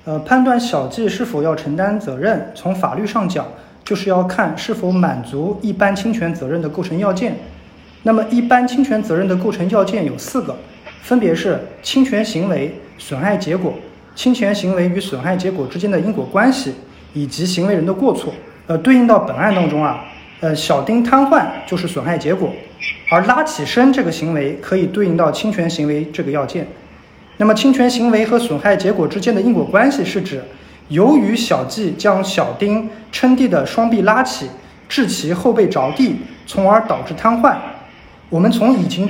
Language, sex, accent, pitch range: Chinese, male, native, 170-240 Hz